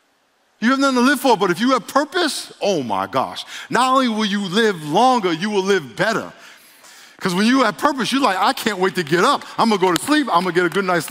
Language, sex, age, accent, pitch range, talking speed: English, male, 50-69, American, 170-225 Hz, 260 wpm